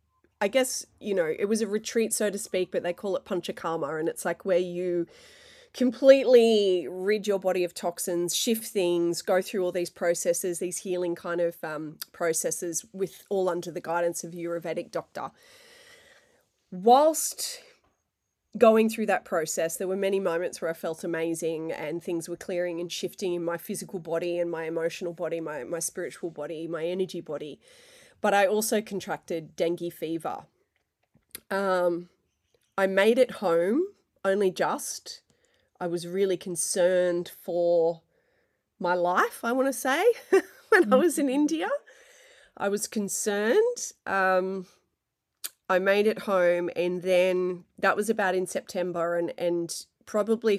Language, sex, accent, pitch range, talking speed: English, female, Australian, 175-225 Hz, 155 wpm